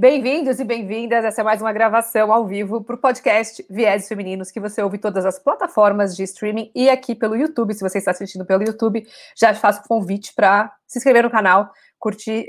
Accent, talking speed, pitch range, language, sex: Brazilian, 210 wpm, 205-245 Hz, Portuguese, female